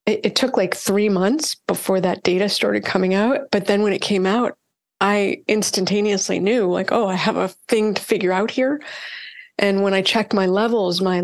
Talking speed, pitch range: 200 wpm, 180-210 Hz